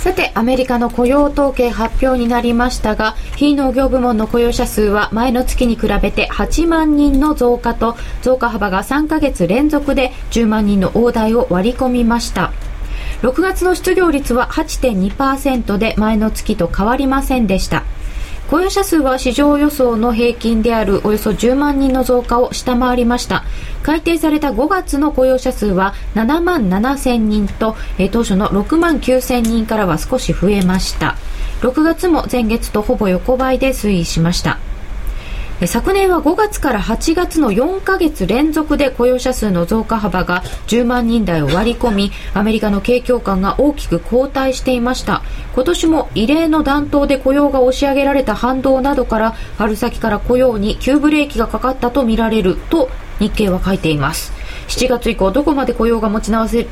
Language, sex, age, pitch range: Japanese, female, 20-39, 220-280 Hz